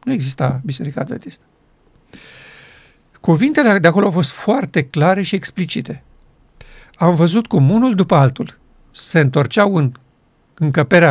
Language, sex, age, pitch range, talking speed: Romanian, male, 50-69, 140-195 Hz, 125 wpm